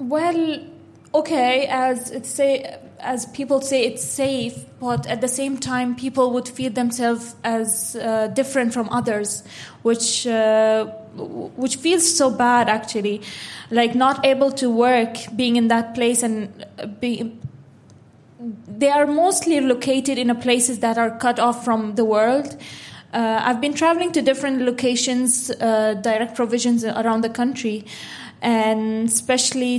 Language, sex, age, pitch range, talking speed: English, female, 20-39, 230-275 Hz, 145 wpm